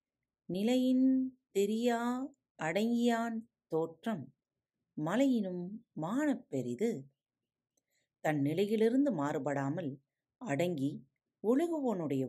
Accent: native